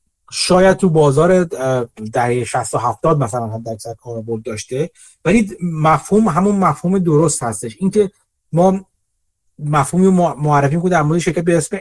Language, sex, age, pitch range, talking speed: Persian, male, 30-49, 135-175 Hz, 140 wpm